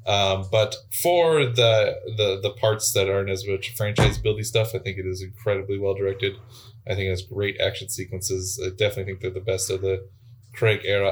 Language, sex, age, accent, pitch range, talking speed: English, male, 20-39, American, 95-115 Hz, 205 wpm